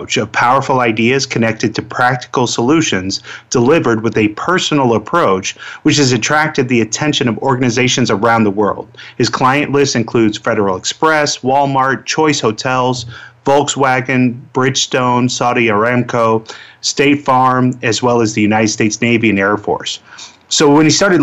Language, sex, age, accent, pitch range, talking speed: English, male, 30-49, American, 115-135 Hz, 145 wpm